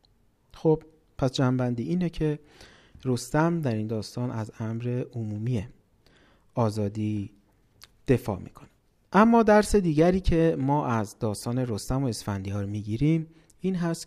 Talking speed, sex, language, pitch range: 115 wpm, male, Persian, 110-145 Hz